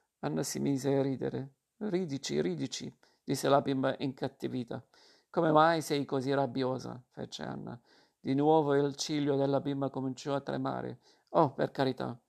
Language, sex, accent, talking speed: Italian, male, native, 145 wpm